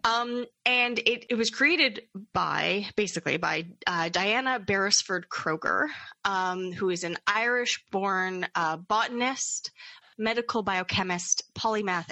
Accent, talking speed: American, 100 wpm